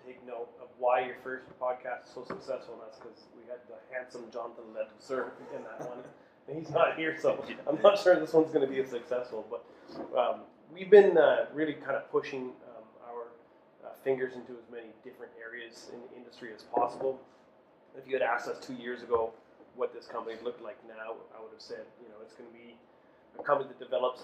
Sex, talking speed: male, 220 wpm